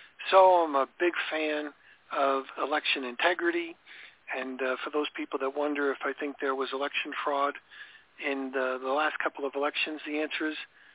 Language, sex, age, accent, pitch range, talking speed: English, male, 50-69, American, 145-200 Hz, 175 wpm